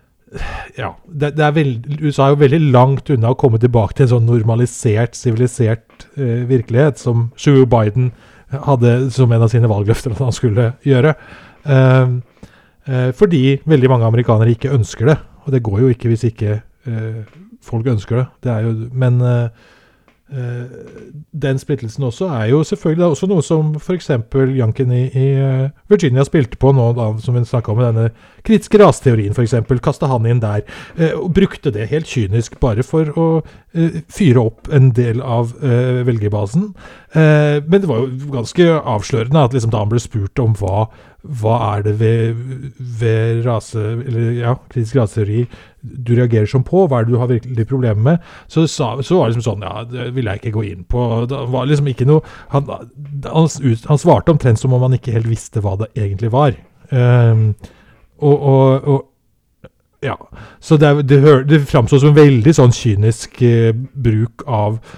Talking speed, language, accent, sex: 175 wpm, English, Norwegian, male